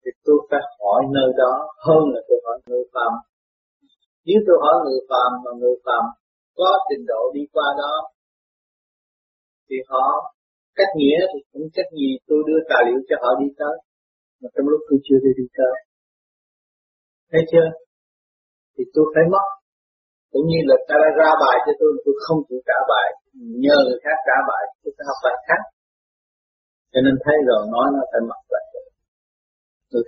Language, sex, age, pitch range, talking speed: Vietnamese, male, 30-49, 125-165 Hz, 180 wpm